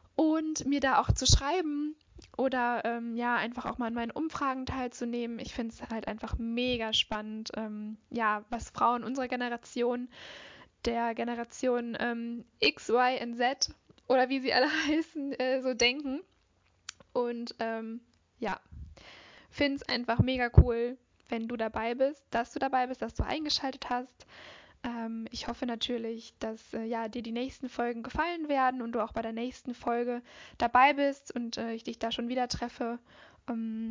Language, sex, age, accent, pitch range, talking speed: German, female, 10-29, German, 230-260 Hz, 170 wpm